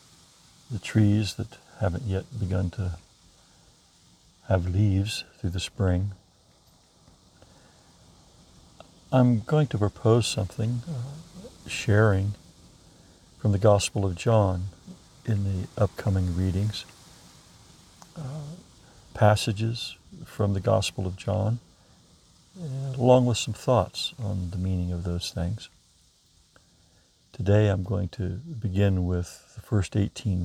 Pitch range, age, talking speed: 90-110 Hz, 60-79, 100 wpm